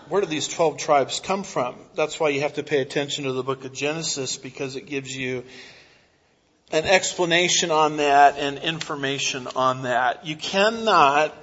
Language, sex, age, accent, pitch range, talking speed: English, male, 40-59, American, 150-200 Hz, 175 wpm